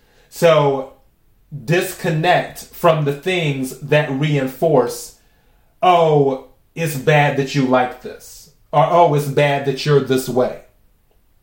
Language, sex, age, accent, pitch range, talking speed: English, male, 30-49, American, 135-165 Hz, 115 wpm